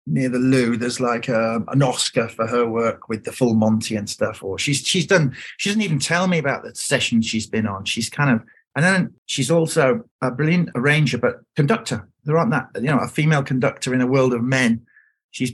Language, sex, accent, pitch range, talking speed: English, male, British, 125-170 Hz, 225 wpm